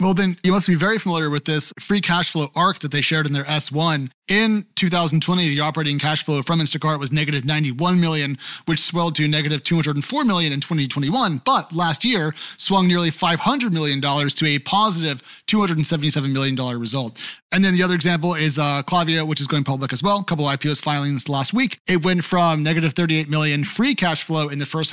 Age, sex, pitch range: 30-49, male, 150-180 Hz